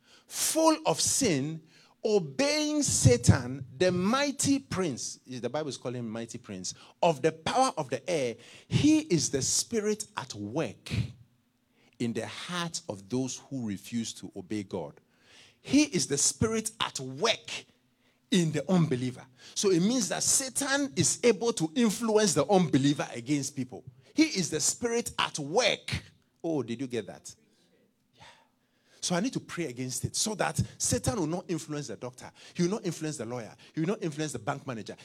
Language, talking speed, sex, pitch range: English, 170 wpm, male, 120-175 Hz